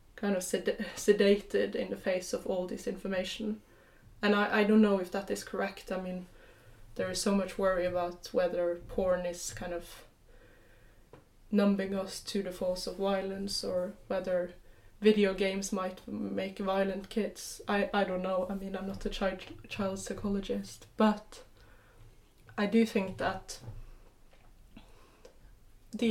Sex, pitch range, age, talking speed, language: female, 185-210 Hz, 20-39, 150 wpm, English